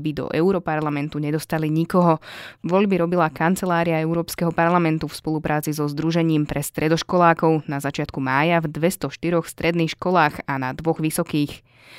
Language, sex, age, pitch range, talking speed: Slovak, female, 20-39, 150-175 Hz, 135 wpm